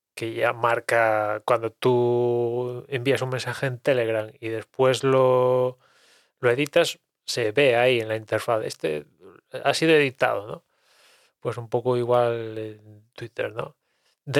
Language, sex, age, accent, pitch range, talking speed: English, male, 20-39, Spanish, 115-145 Hz, 140 wpm